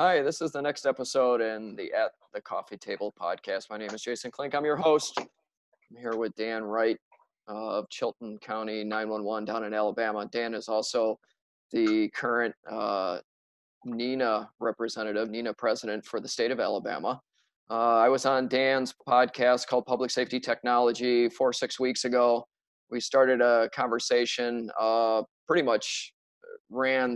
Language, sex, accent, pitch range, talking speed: English, male, American, 115-125 Hz, 155 wpm